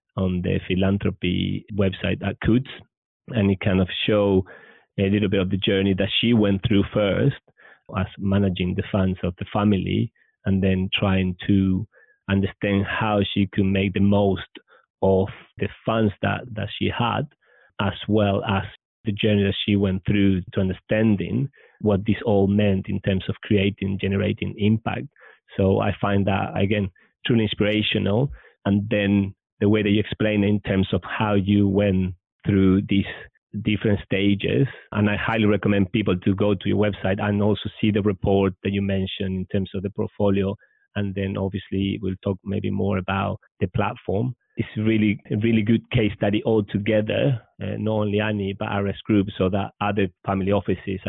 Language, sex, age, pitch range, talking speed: English, male, 30-49, 95-105 Hz, 170 wpm